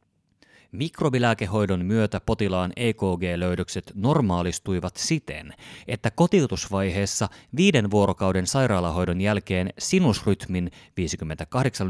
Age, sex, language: 30-49, male, Finnish